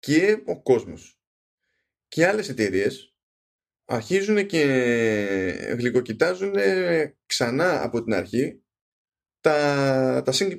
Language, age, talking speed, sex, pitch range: Greek, 20-39, 90 wpm, male, 115-140 Hz